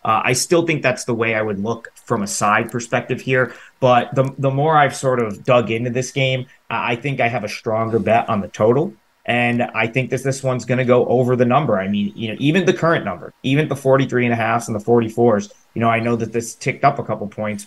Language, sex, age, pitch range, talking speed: English, male, 30-49, 105-135 Hz, 260 wpm